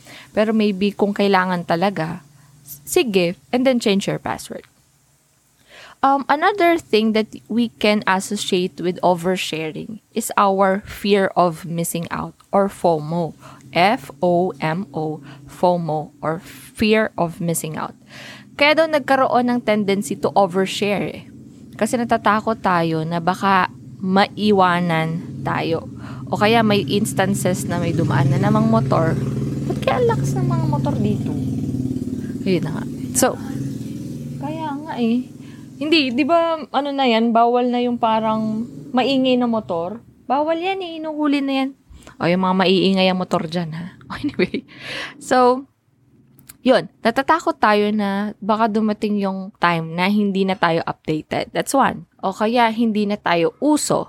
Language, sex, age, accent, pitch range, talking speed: English, female, 20-39, Filipino, 165-230 Hz, 135 wpm